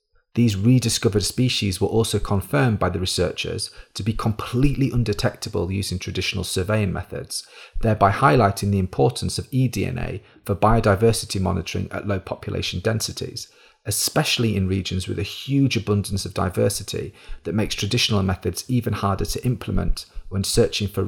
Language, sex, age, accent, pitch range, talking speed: English, male, 30-49, British, 95-110 Hz, 140 wpm